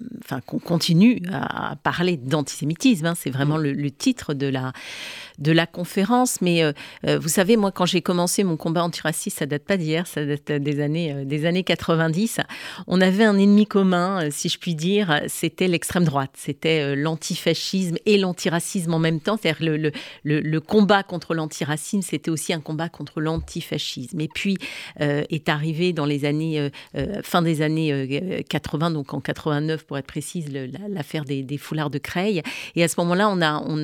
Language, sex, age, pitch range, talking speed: French, female, 40-59, 155-190 Hz, 185 wpm